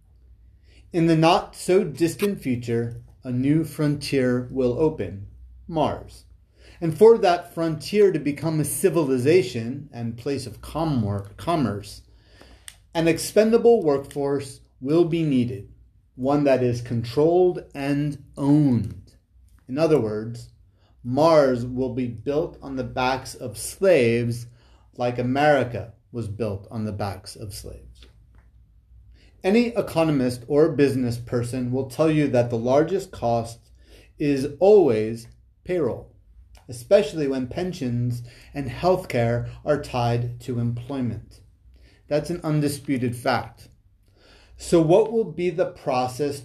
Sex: male